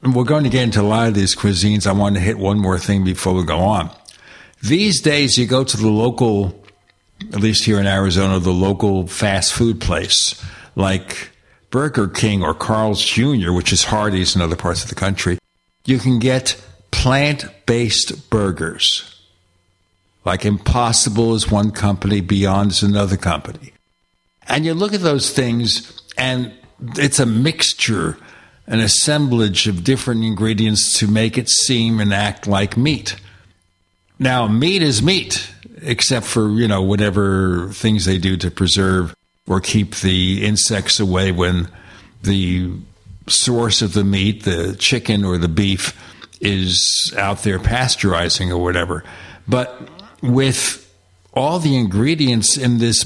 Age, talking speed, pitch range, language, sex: 60-79, 150 wpm, 95-120 Hz, English, male